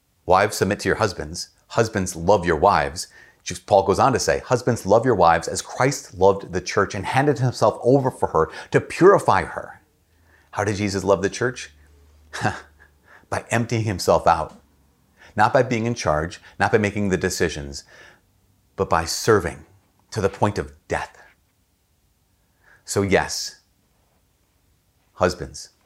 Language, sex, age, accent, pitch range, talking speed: English, male, 40-59, American, 85-105 Hz, 145 wpm